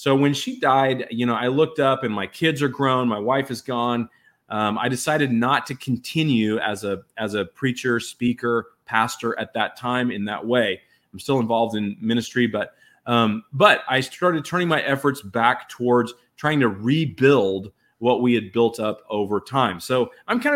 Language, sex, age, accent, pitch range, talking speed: English, male, 30-49, American, 110-140 Hz, 190 wpm